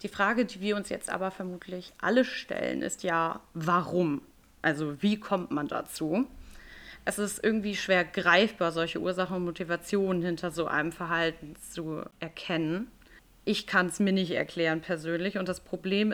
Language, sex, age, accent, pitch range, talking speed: German, female, 30-49, German, 170-200 Hz, 160 wpm